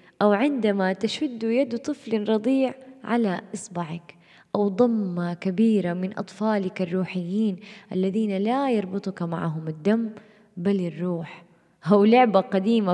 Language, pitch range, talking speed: Arabic, 175-220 Hz, 110 wpm